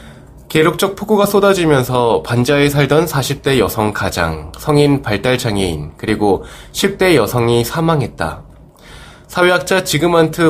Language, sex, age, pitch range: Korean, male, 20-39, 100-155 Hz